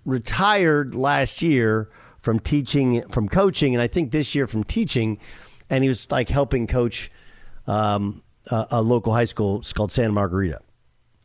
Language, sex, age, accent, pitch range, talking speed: English, male, 50-69, American, 105-140 Hz, 160 wpm